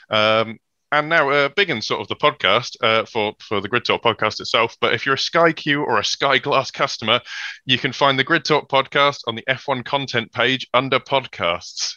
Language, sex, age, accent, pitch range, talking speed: English, male, 20-39, British, 105-125 Hz, 215 wpm